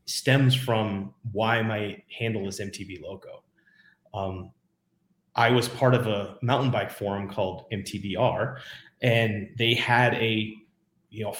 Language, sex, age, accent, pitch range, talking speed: English, male, 30-49, American, 100-120 Hz, 130 wpm